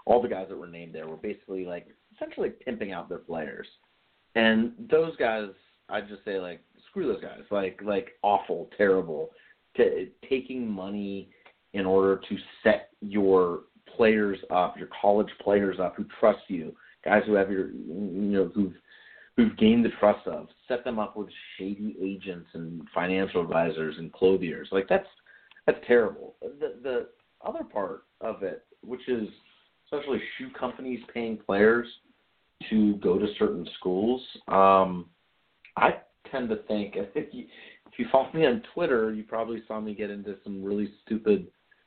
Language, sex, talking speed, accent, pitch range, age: English, male, 160 wpm, American, 95-130 Hz, 30-49